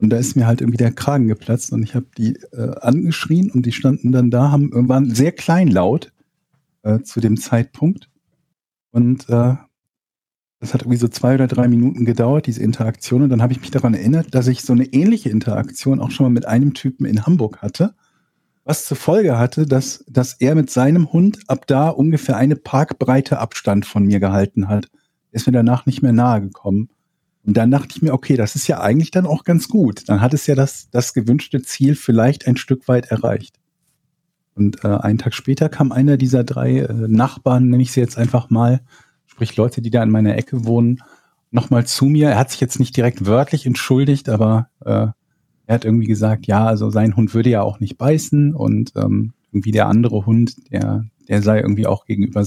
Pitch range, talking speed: 110-135 Hz, 205 wpm